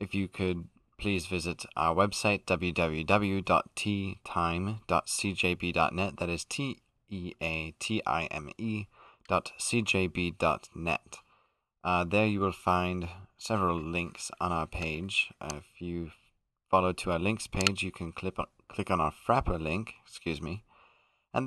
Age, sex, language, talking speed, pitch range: 20-39, male, English, 125 wpm, 85-110 Hz